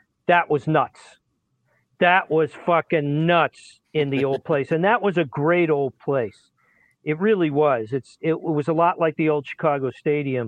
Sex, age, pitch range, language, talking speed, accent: male, 40-59, 130-165 Hz, English, 180 wpm, American